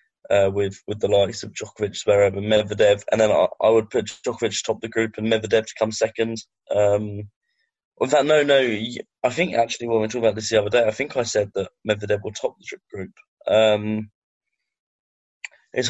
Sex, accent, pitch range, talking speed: male, British, 105-115 Hz, 200 wpm